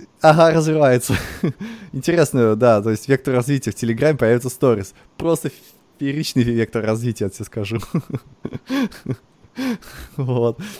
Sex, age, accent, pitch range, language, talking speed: male, 20-39, native, 110-140 Hz, Russian, 110 wpm